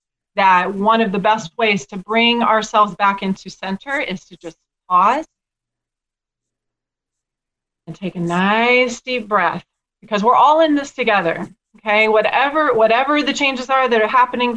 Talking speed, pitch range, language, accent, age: 150 wpm, 205-250 Hz, English, American, 30-49